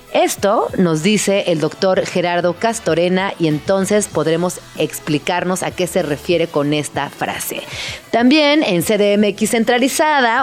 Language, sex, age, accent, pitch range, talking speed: Spanish, female, 30-49, Mexican, 175-230 Hz, 125 wpm